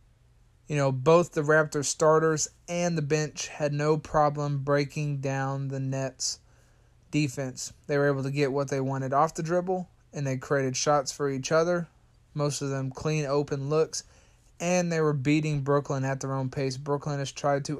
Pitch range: 135-155 Hz